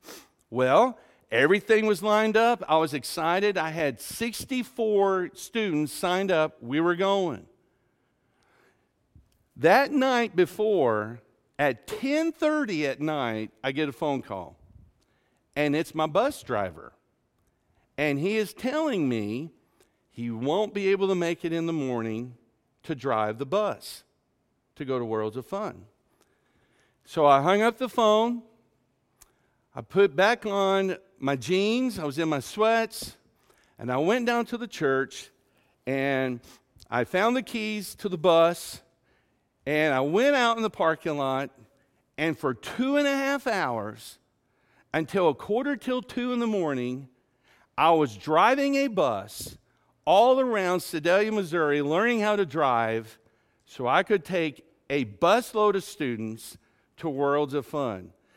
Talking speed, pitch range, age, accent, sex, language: 145 wpm, 130-215 Hz, 50-69, American, male, English